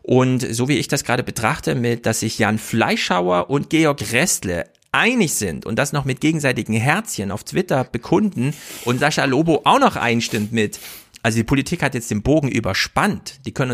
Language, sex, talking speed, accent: German, male, 190 wpm, German